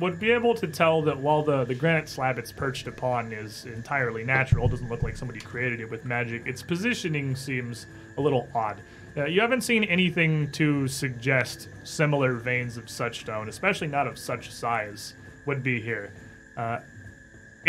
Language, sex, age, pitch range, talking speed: English, male, 30-49, 120-155 Hz, 175 wpm